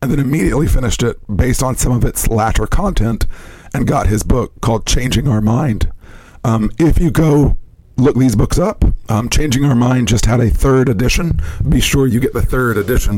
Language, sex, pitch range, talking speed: English, male, 100-130 Hz, 200 wpm